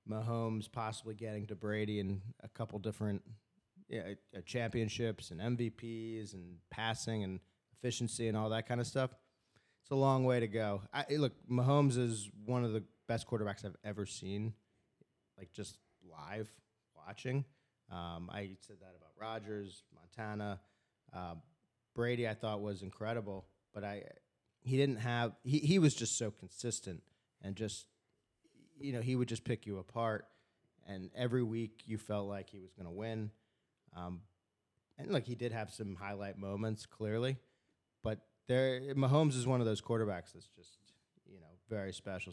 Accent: American